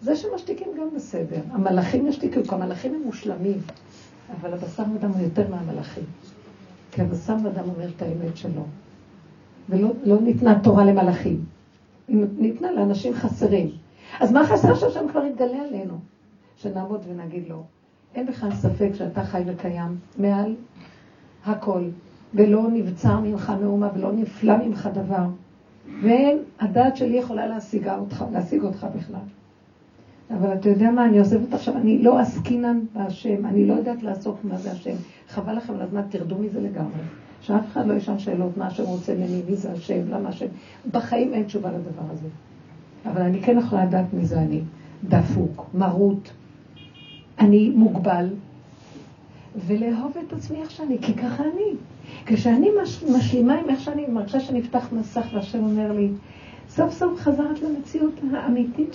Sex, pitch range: female, 185-245 Hz